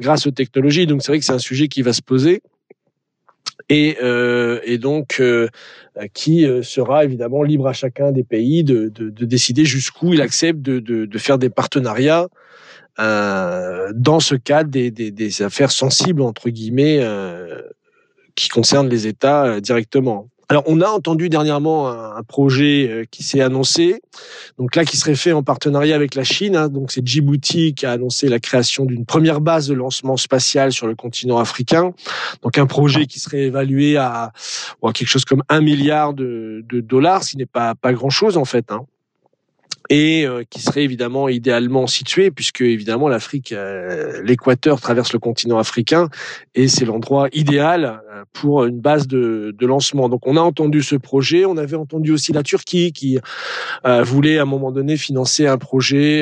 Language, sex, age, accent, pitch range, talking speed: French, male, 40-59, French, 125-155 Hz, 180 wpm